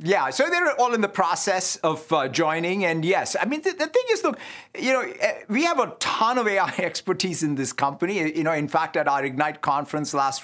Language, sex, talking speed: English, male, 225 wpm